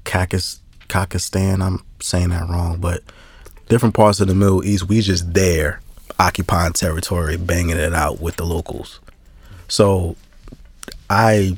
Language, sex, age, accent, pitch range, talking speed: English, male, 20-39, American, 85-110 Hz, 130 wpm